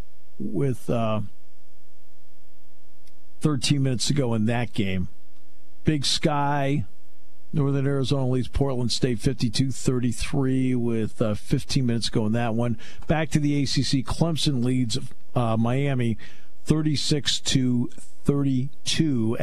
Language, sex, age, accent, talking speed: English, male, 50-69, American, 110 wpm